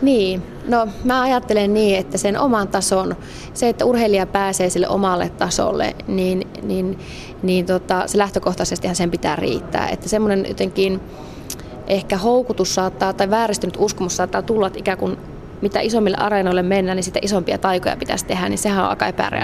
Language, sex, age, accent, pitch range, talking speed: Finnish, female, 20-39, native, 185-205 Hz, 160 wpm